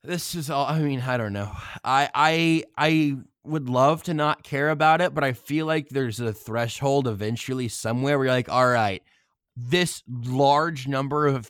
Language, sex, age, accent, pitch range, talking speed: English, male, 20-39, American, 115-150 Hz, 185 wpm